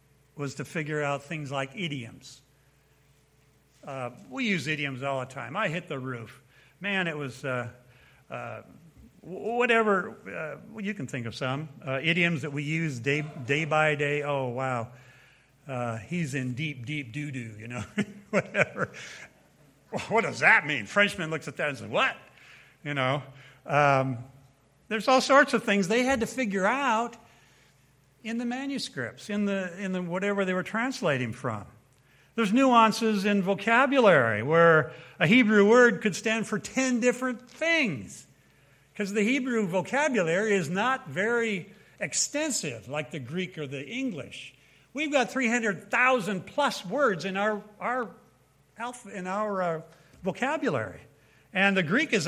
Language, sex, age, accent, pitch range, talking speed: English, male, 60-79, American, 140-220 Hz, 155 wpm